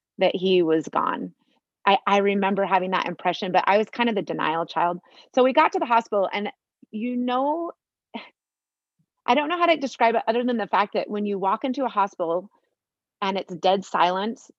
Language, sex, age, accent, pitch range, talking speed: English, female, 30-49, American, 175-225 Hz, 200 wpm